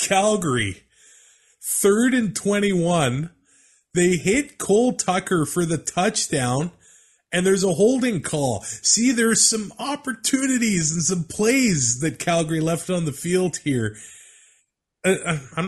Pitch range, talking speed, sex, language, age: 105-170 Hz, 120 wpm, male, English, 20-39